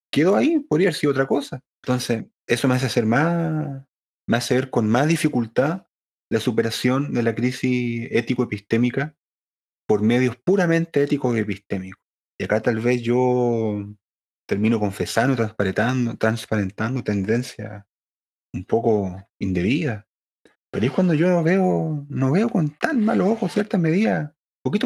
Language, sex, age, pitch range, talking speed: English, male, 30-49, 110-155 Hz, 140 wpm